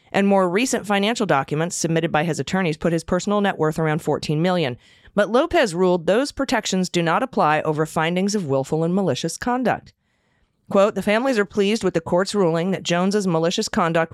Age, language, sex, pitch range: 30-49, English, female, 150-195 Hz